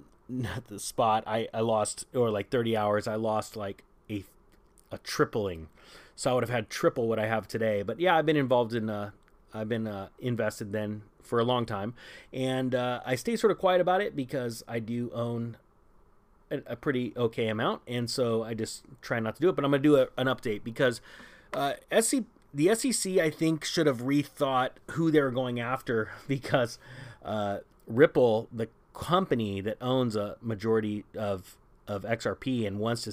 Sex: male